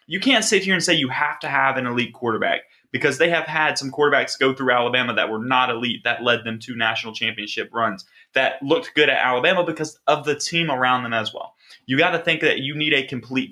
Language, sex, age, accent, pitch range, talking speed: English, male, 20-39, American, 125-155 Hz, 245 wpm